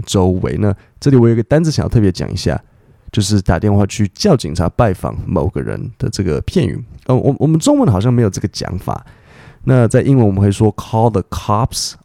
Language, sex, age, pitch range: Chinese, male, 20-39, 90-115 Hz